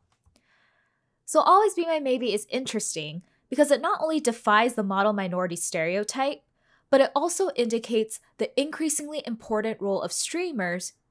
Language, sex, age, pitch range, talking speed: English, female, 10-29, 170-255 Hz, 140 wpm